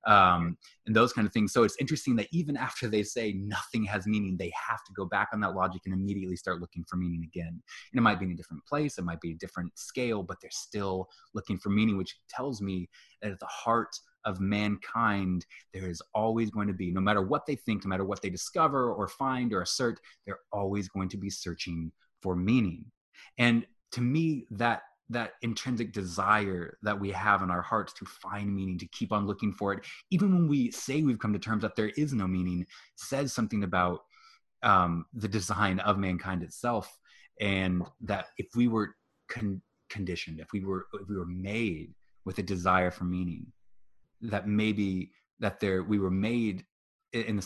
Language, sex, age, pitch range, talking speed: English, male, 20-39, 90-110 Hz, 200 wpm